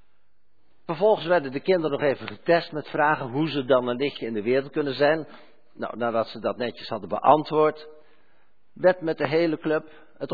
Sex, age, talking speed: male, 50-69, 185 wpm